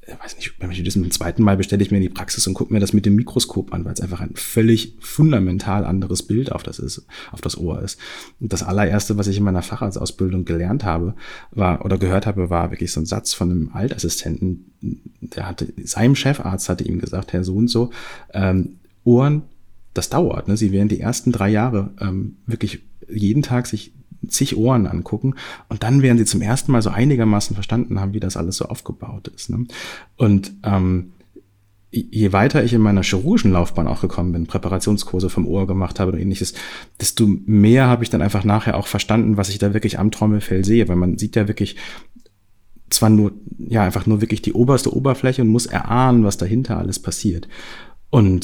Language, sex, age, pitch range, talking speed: German, male, 30-49, 95-115 Hz, 190 wpm